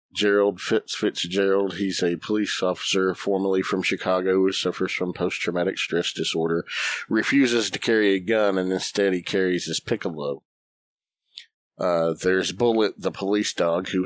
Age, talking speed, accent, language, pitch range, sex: 50-69, 145 wpm, American, English, 90-100 Hz, male